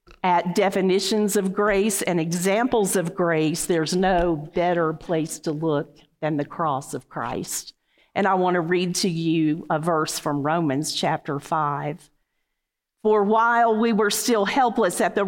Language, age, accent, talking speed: English, 50-69, American, 155 wpm